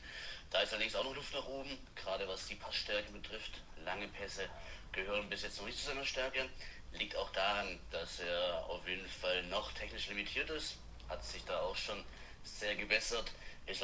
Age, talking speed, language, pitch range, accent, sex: 30-49, 185 wpm, German, 90-115 Hz, German, male